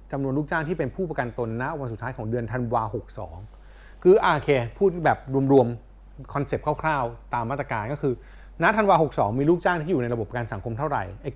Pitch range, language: 110-150 Hz, Thai